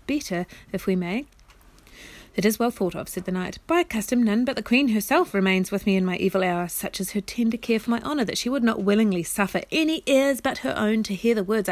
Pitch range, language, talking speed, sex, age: 185-235 Hz, English, 250 wpm, female, 30-49